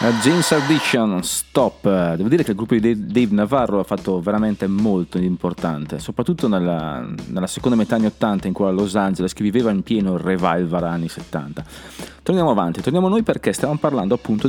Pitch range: 90-120 Hz